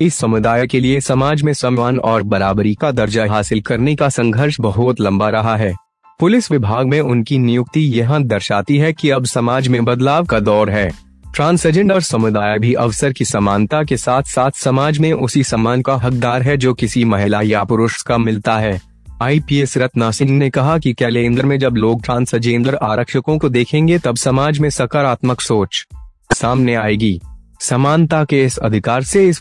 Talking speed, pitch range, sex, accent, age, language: 175 wpm, 115-140 Hz, male, native, 20-39, Hindi